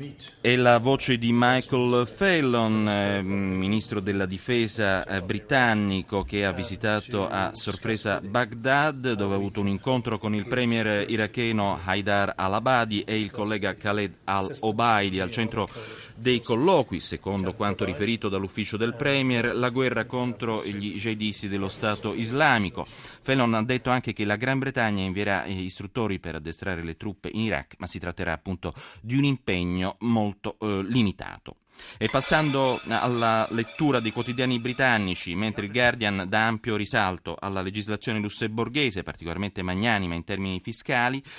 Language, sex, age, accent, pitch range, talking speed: Italian, male, 30-49, native, 95-120 Hz, 140 wpm